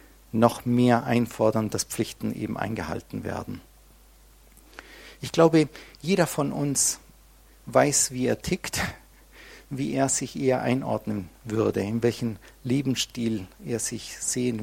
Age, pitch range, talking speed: 50-69, 115-145 Hz, 120 wpm